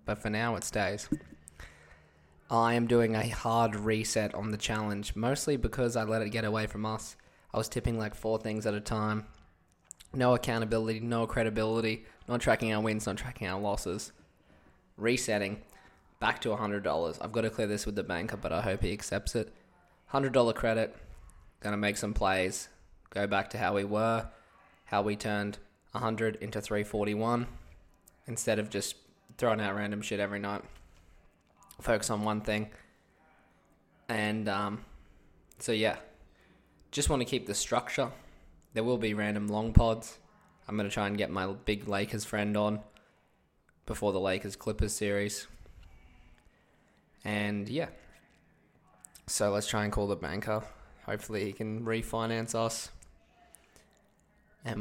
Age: 20-39